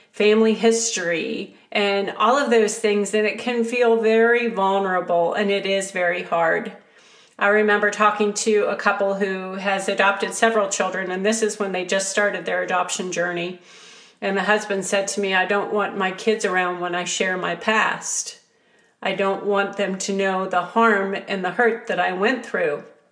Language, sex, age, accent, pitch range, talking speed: English, female, 40-59, American, 195-225 Hz, 185 wpm